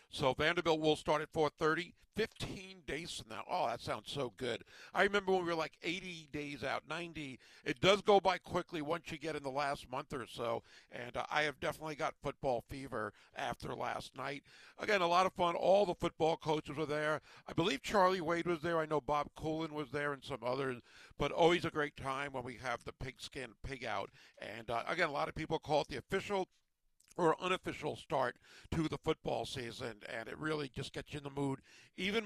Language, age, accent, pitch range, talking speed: English, 50-69, American, 145-170 Hz, 215 wpm